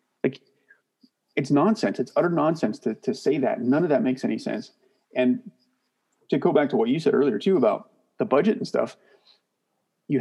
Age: 30-49